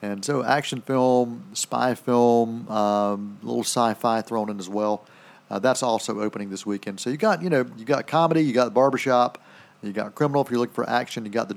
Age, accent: 40-59, American